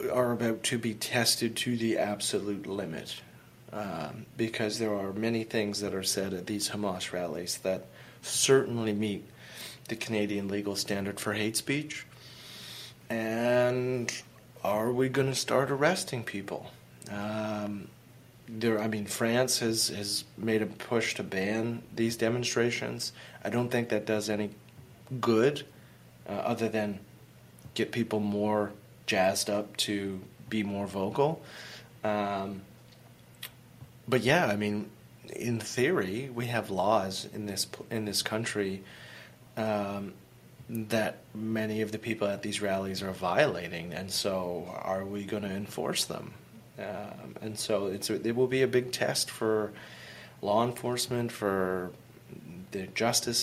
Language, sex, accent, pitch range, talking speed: English, male, American, 100-115 Hz, 140 wpm